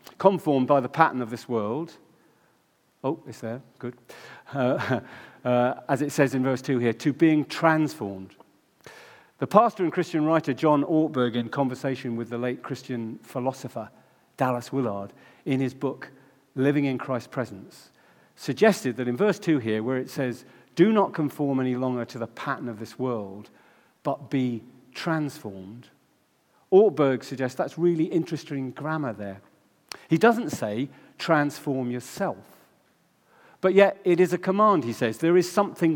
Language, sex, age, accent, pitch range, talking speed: English, male, 40-59, British, 125-165 Hz, 155 wpm